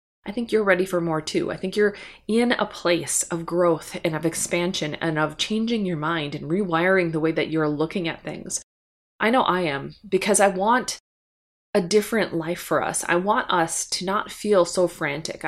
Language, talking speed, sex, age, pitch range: English, 200 wpm, female, 20-39, 165-210 Hz